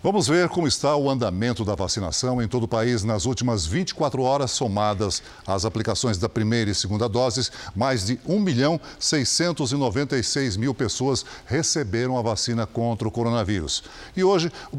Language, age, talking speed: Portuguese, 60-79, 160 wpm